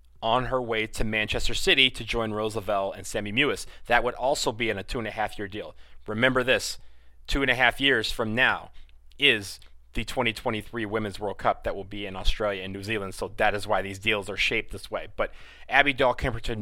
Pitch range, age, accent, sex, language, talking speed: 110-135 Hz, 30-49, American, male, English, 195 wpm